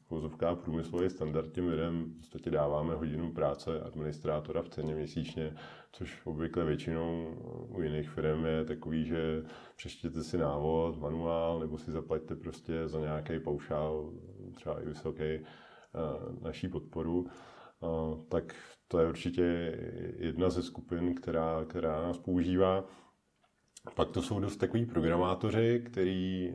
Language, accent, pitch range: Czech, native, 80-90 Hz